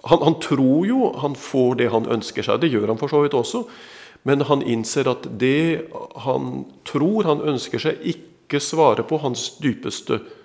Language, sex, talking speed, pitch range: Swedish, male, 185 wpm, 125-160 Hz